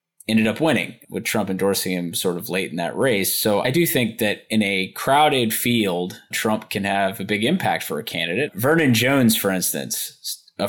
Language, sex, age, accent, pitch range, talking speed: English, male, 20-39, American, 105-130 Hz, 200 wpm